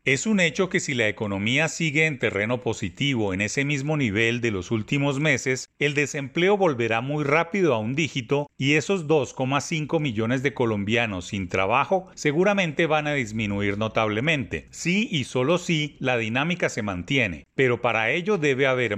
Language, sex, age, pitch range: Spanish, male, 40-59, 115-160 Hz